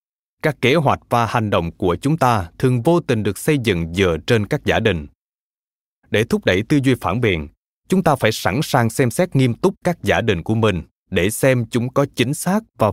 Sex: male